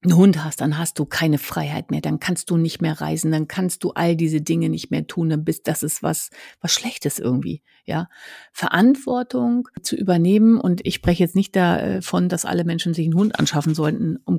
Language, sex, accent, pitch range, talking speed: German, female, German, 165-210 Hz, 215 wpm